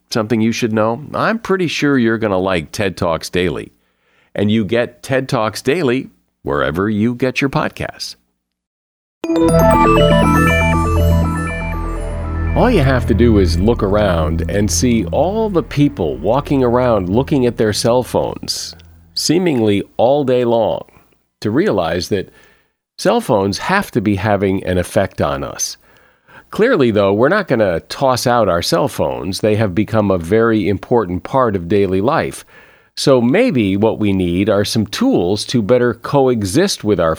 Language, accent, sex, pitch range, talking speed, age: English, American, male, 95-125 Hz, 155 wpm, 50-69